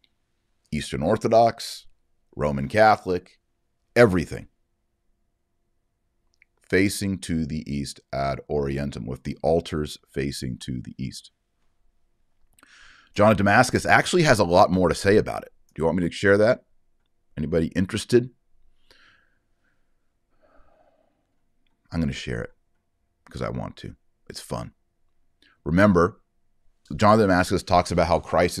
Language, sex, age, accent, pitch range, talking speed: English, male, 40-59, American, 70-95 Hz, 120 wpm